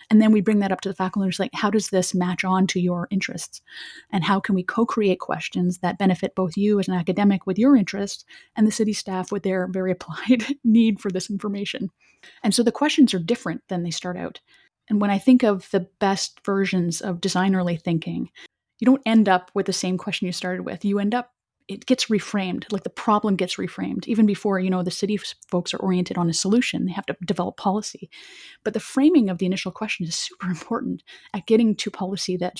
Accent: American